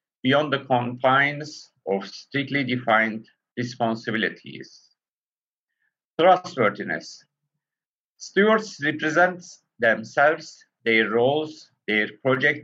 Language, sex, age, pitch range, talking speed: Turkish, male, 50-69, 115-155 Hz, 70 wpm